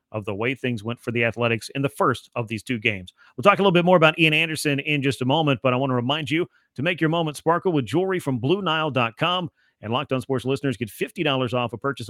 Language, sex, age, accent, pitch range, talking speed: English, male, 40-59, American, 130-160 Hz, 265 wpm